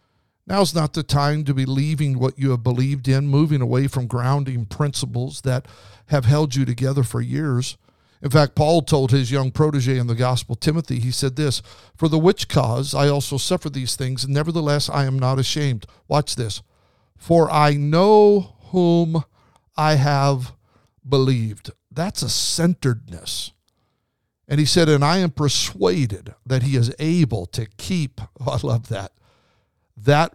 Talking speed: 165 wpm